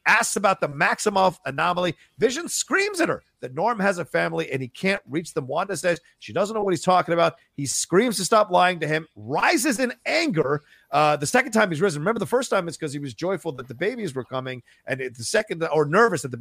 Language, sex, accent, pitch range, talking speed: English, male, American, 145-205 Hz, 240 wpm